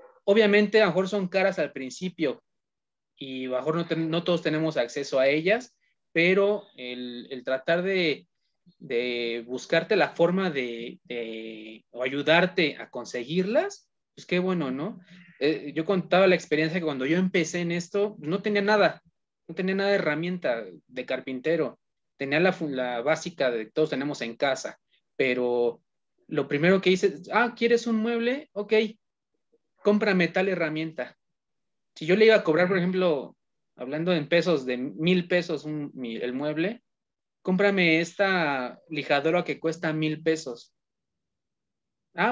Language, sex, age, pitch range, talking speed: Spanish, male, 30-49, 145-190 Hz, 150 wpm